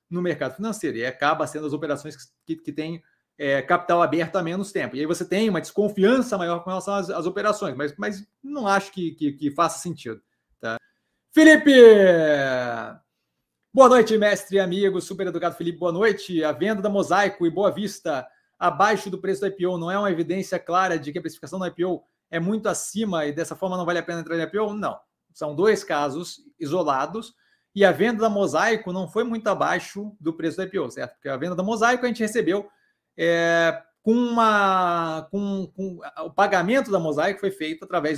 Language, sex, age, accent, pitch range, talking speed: Portuguese, male, 30-49, Brazilian, 165-205 Hz, 200 wpm